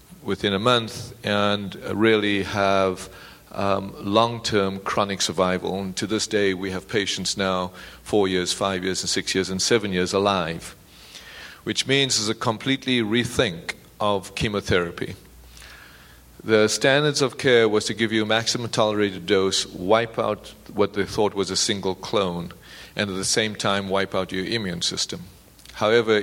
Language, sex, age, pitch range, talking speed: English, male, 50-69, 95-110 Hz, 160 wpm